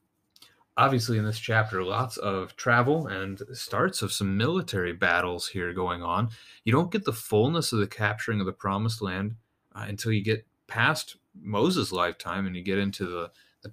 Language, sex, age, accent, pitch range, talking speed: English, male, 30-49, American, 95-115 Hz, 180 wpm